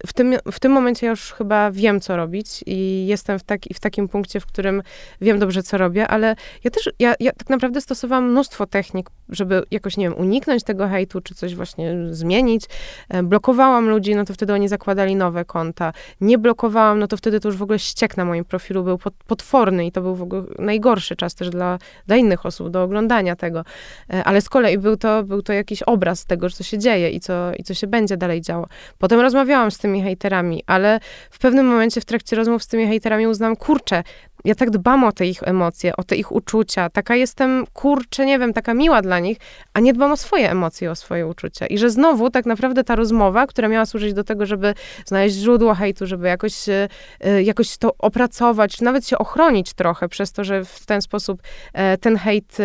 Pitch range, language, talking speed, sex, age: 190-235 Hz, Polish, 210 wpm, female, 20-39